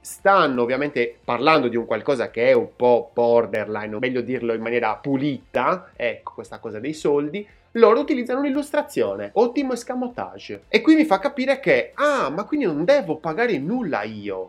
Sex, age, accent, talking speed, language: male, 30-49, native, 170 wpm, Italian